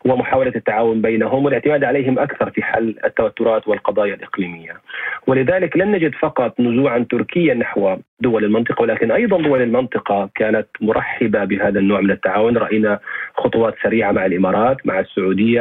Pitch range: 115-155 Hz